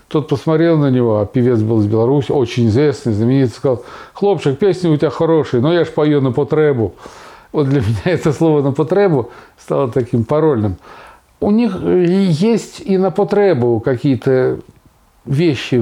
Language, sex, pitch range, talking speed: Russian, male, 125-175 Hz, 160 wpm